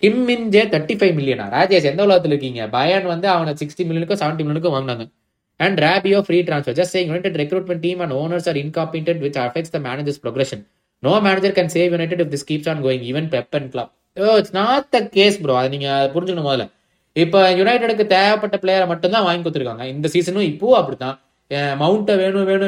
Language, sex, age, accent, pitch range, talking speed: Tamil, male, 20-39, native, 145-195 Hz, 155 wpm